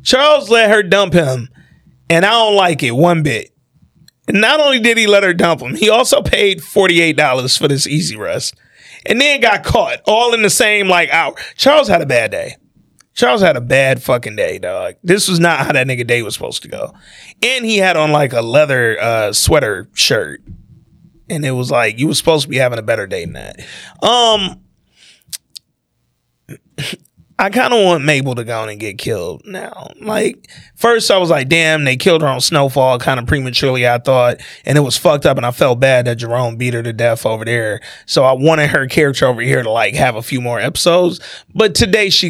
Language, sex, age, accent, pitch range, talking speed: English, male, 30-49, American, 125-190 Hz, 215 wpm